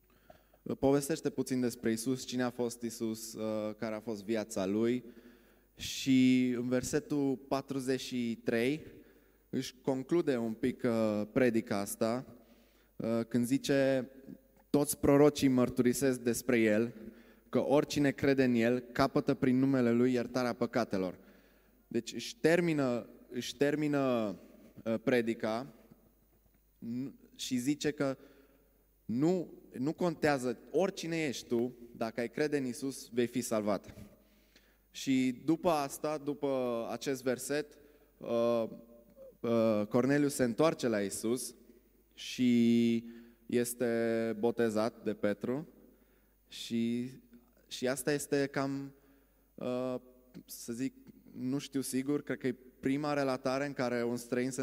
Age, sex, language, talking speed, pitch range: 20-39, male, Romanian, 110 wpm, 115-135 Hz